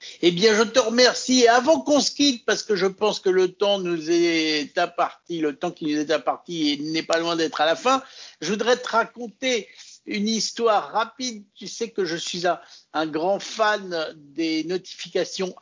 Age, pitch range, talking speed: 60-79, 165-235 Hz, 190 wpm